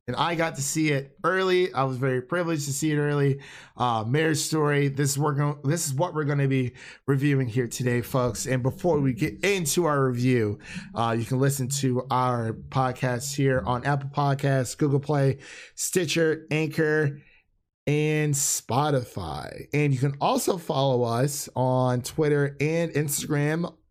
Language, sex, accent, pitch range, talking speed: English, male, American, 125-160 Hz, 160 wpm